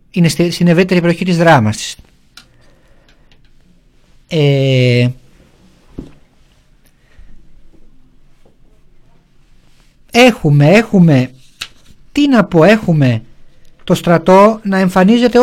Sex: male